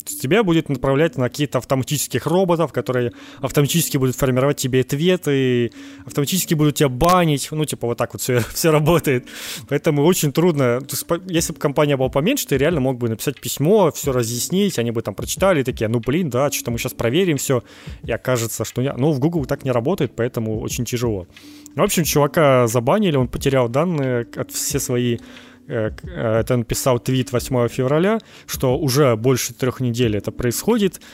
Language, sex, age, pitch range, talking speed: Ukrainian, male, 20-39, 120-150 Hz, 175 wpm